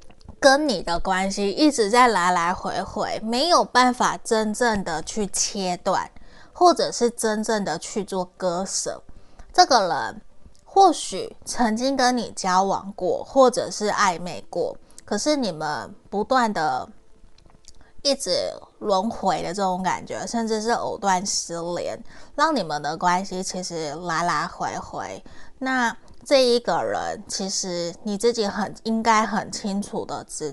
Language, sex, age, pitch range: Chinese, female, 20-39, 185-240 Hz